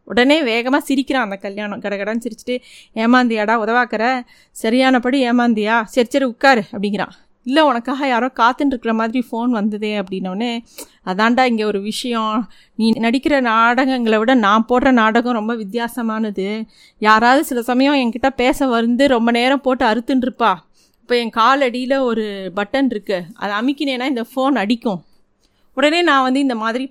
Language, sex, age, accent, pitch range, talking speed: Tamil, female, 20-39, native, 220-270 Hz, 145 wpm